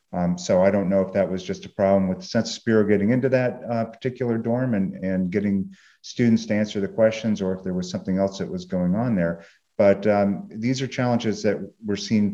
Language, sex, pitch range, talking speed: English, male, 95-115 Hz, 235 wpm